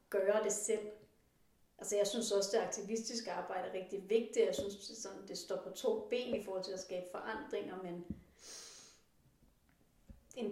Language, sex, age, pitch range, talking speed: Danish, female, 30-49, 200-235 Hz, 170 wpm